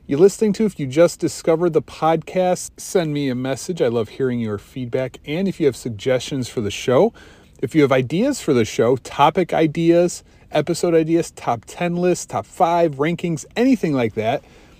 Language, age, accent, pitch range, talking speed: English, 30-49, American, 125-165 Hz, 185 wpm